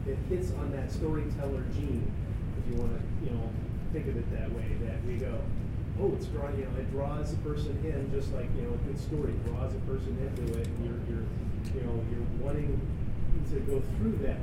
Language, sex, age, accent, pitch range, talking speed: English, male, 30-49, American, 100-120 Hz, 215 wpm